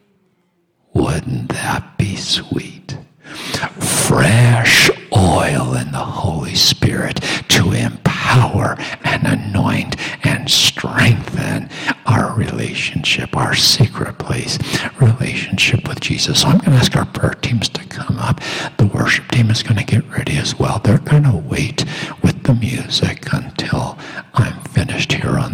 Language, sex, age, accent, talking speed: English, male, 60-79, American, 135 wpm